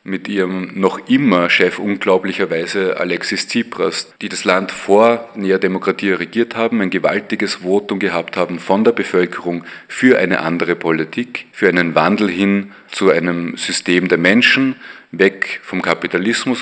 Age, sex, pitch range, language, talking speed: 30-49, male, 90-110 Hz, German, 145 wpm